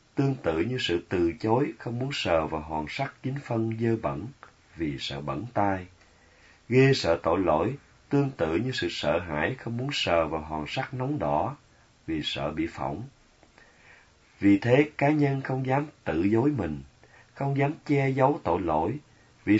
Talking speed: 180 wpm